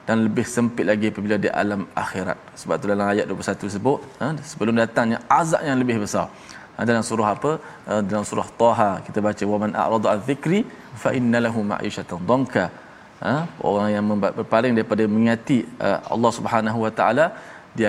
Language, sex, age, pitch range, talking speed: Malayalam, male, 20-39, 105-120 Hz, 165 wpm